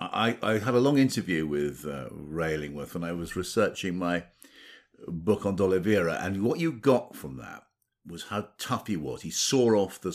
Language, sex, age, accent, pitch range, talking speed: English, male, 60-79, British, 85-115 Hz, 190 wpm